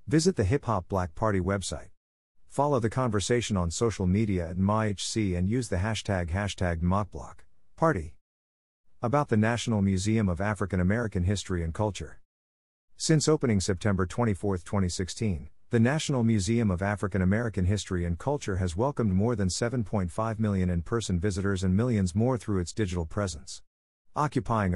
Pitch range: 90-115 Hz